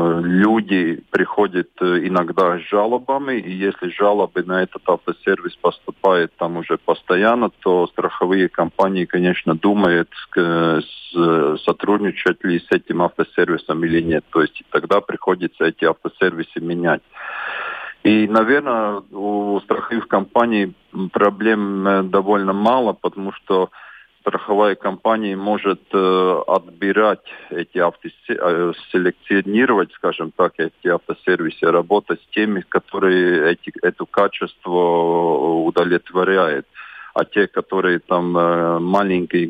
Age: 40-59